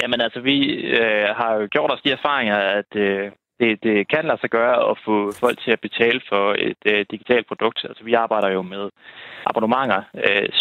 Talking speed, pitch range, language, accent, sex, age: 205 wpm, 100-115 Hz, Danish, native, male, 20-39